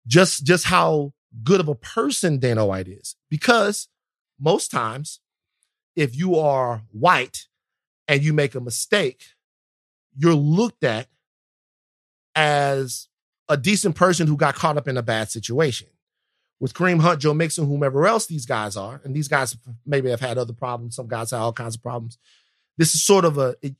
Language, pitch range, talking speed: English, 120-180 Hz, 170 wpm